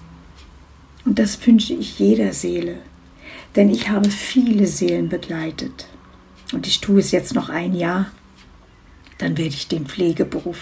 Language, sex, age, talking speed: German, female, 60-79, 140 wpm